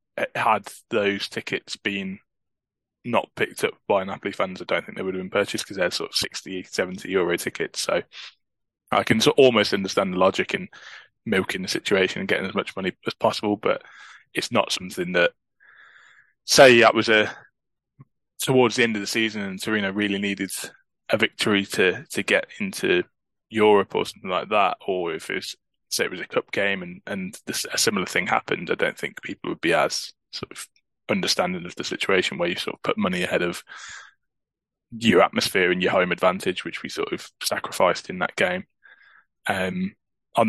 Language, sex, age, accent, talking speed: English, male, 20-39, British, 185 wpm